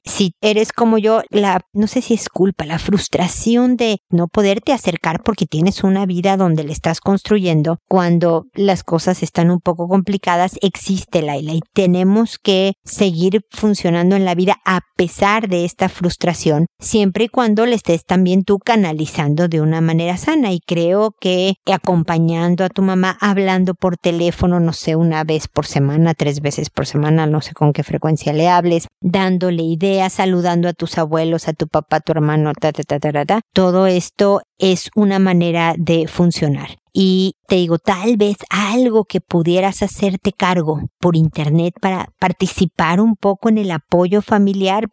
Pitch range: 165-195 Hz